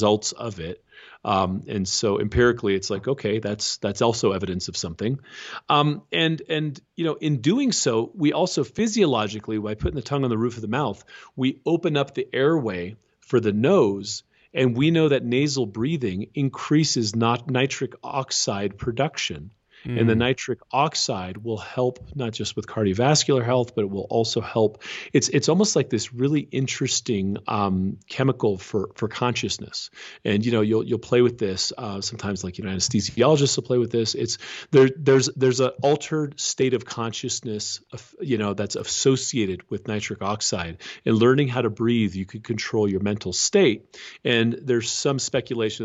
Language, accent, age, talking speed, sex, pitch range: English, American, 40-59, 175 wpm, male, 105-135 Hz